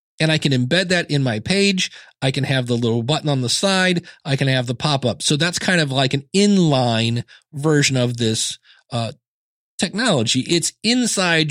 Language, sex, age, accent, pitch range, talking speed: English, male, 40-59, American, 125-165 Hz, 190 wpm